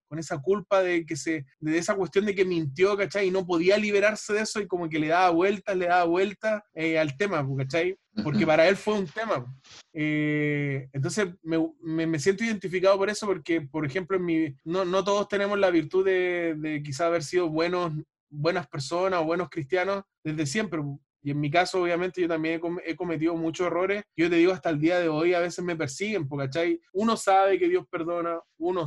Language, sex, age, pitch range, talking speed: Spanish, male, 20-39, 160-190 Hz, 210 wpm